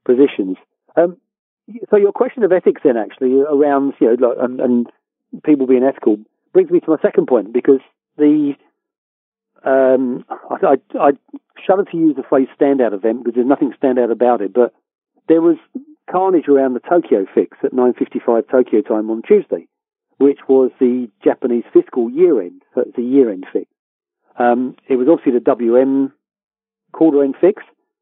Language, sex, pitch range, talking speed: English, male, 125-180 Hz, 165 wpm